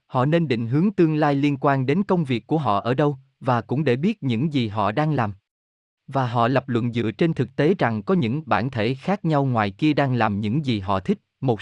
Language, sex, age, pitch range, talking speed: Vietnamese, male, 20-39, 110-155 Hz, 250 wpm